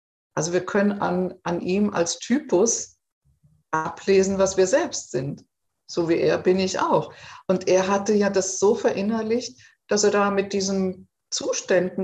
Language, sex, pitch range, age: German, female, 175-205 Hz, 50-69